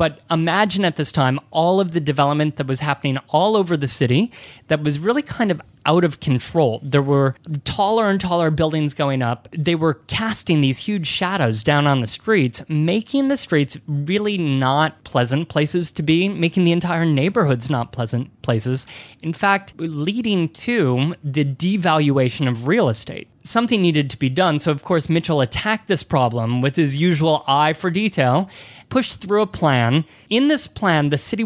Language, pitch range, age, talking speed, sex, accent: English, 140-170 Hz, 20-39, 180 wpm, male, American